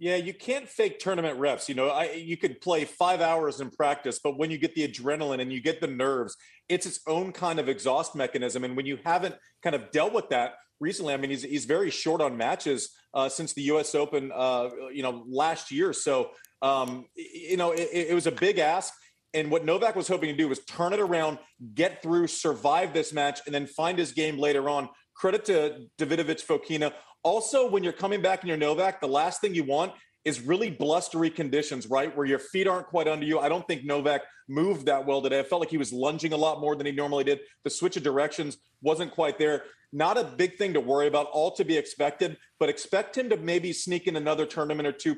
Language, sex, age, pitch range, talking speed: English, male, 30-49, 145-180 Hz, 230 wpm